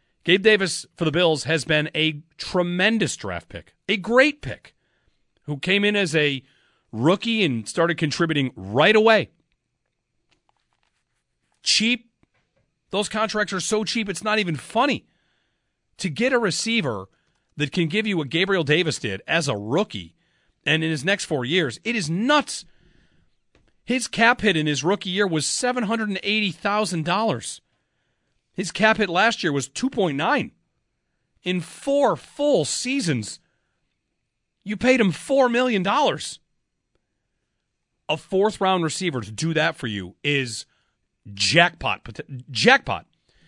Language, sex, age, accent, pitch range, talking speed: English, male, 40-59, American, 135-210 Hz, 135 wpm